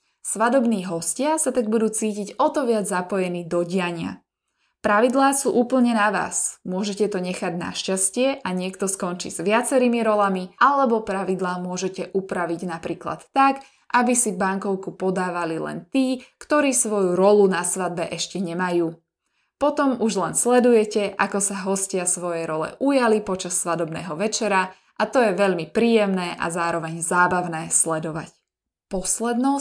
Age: 20-39